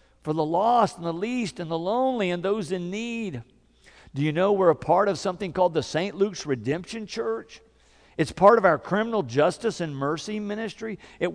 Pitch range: 155-215 Hz